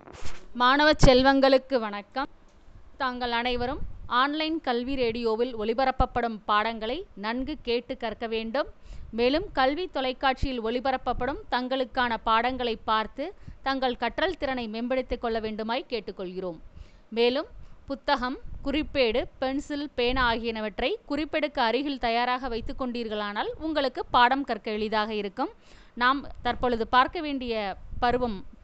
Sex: female